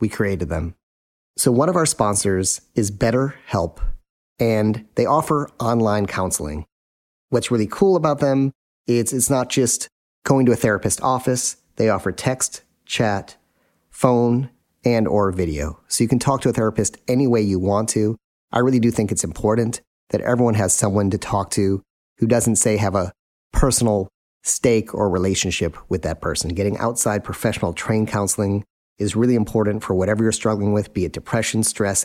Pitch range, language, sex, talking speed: 100-120 Hz, English, male, 170 wpm